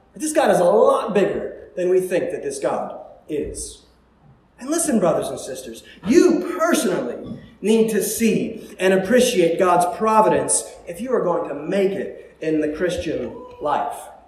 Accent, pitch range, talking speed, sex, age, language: American, 205-330 Hz, 160 wpm, male, 30-49, English